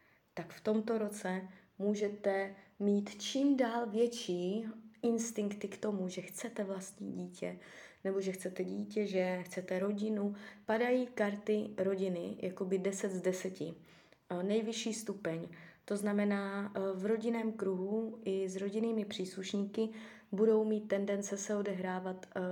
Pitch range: 180-210 Hz